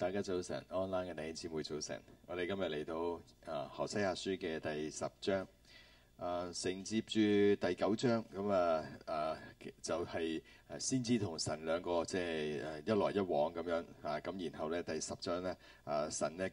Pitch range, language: 80-100 Hz, Chinese